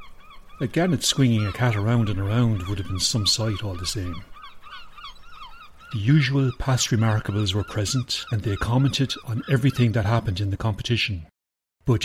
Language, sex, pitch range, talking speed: English, male, 95-120 Hz, 165 wpm